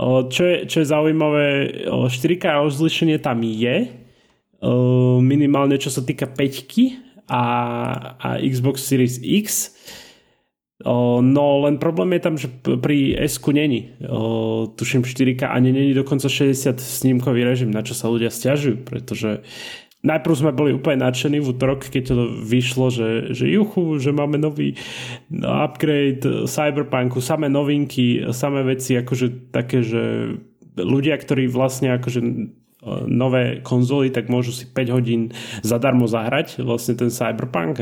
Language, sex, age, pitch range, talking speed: Slovak, male, 30-49, 120-145 Hz, 130 wpm